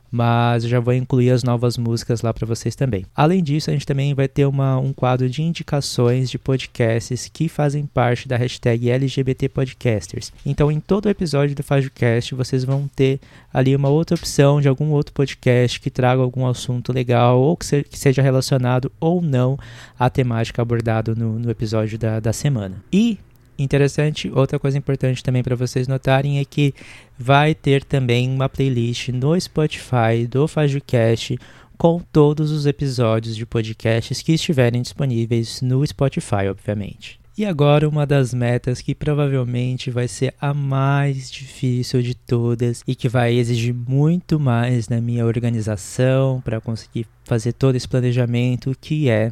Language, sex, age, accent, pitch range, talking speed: Portuguese, male, 20-39, Brazilian, 120-140 Hz, 165 wpm